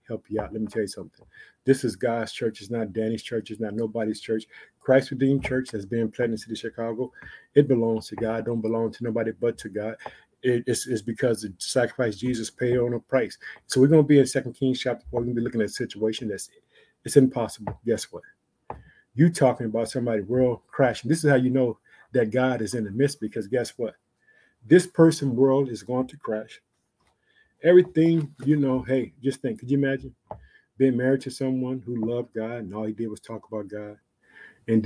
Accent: American